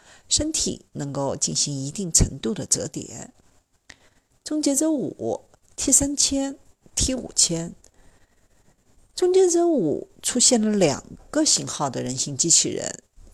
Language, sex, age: Chinese, female, 50-69